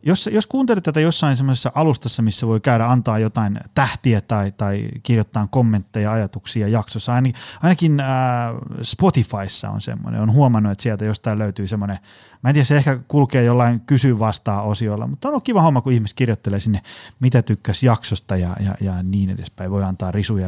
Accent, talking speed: native, 180 wpm